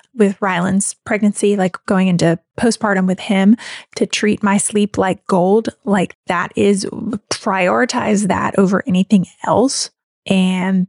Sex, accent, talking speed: female, American, 130 wpm